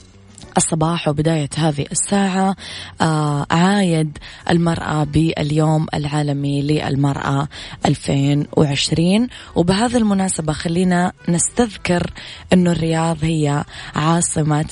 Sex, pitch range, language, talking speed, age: female, 150-170 Hz, Arabic, 75 wpm, 20-39